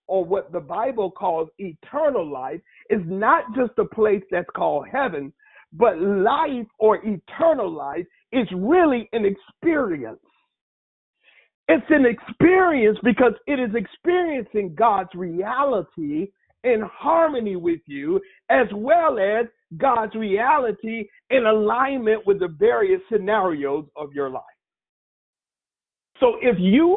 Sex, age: male, 50-69